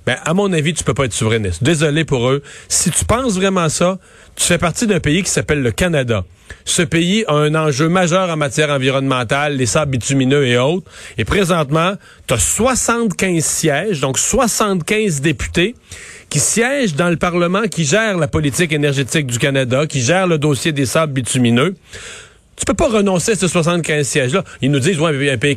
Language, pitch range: French, 130-175 Hz